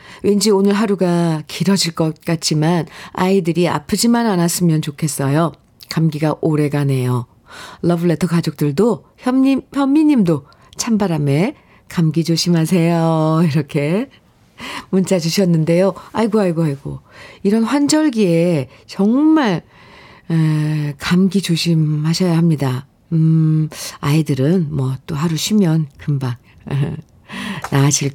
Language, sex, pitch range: Korean, female, 155-215 Hz